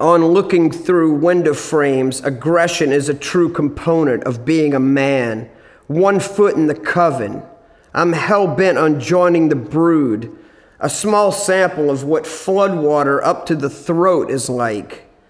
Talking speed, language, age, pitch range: 150 wpm, English, 40-59, 135-175 Hz